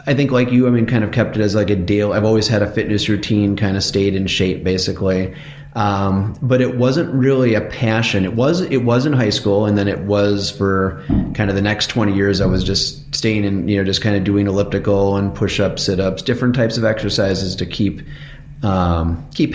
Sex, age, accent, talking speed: male, 30-49, American, 225 wpm